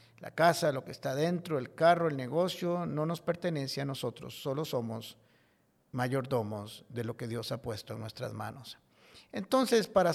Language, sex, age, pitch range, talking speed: Spanish, male, 50-69, 130-175 Hz, 170 wpm